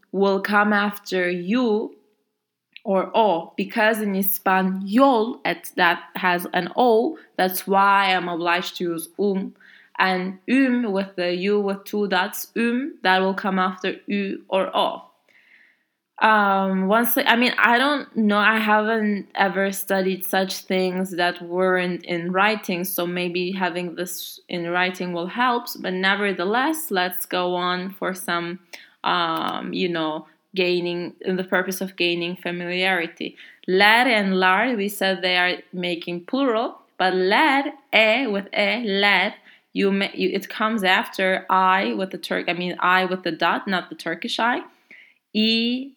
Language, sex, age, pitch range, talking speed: English, female, 20-39, 180-215 Hz, 150 wpm